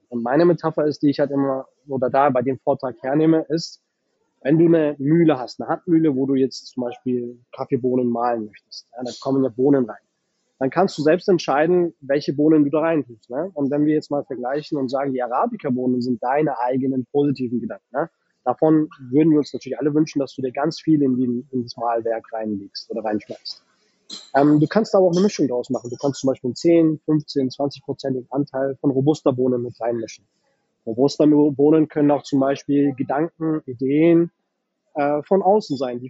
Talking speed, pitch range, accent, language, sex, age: 200 wpm, 125-150 Hz, German, German, male, 20-39